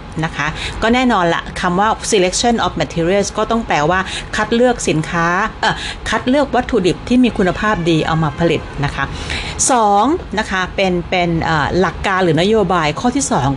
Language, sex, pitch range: Thai, female, 165-240 Hz